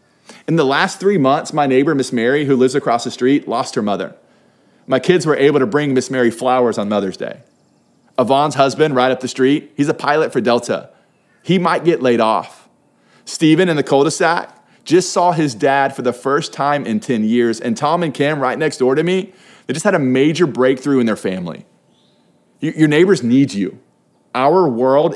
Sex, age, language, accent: male, 30-49, English, American